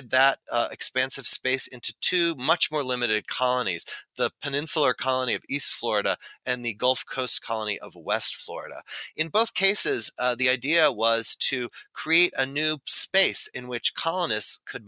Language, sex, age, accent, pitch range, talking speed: English, male, 30-49, American, 125-165 Hz, 160 wpm